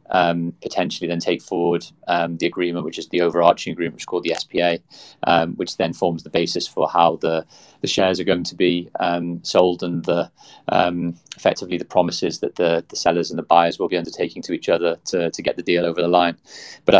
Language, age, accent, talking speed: English, 30-49, British, 220 wpm